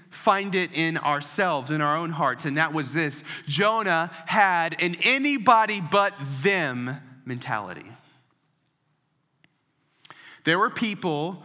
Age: 30-49